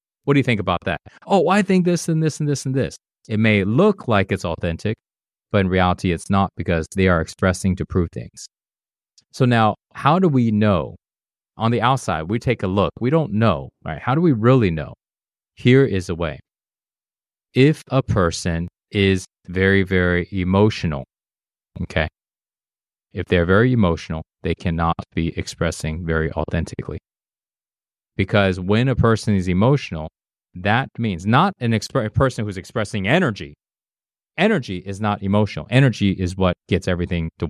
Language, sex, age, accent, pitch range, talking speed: English, male, 30-49, American, 90-115 Hz, 165 wpm